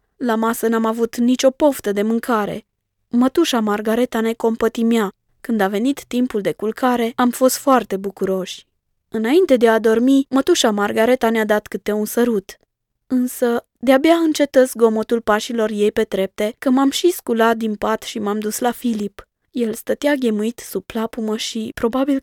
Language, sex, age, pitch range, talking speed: Romanian, female, 20-39, 215-260 Hz, 160 wpm